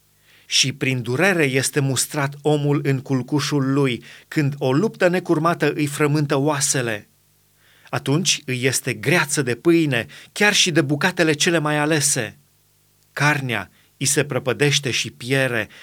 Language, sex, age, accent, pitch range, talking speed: Romanian, male, 30-49, native, 135-170 Hz, 135 wpm